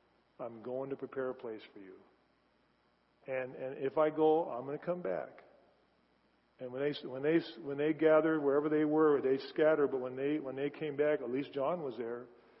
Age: 40-59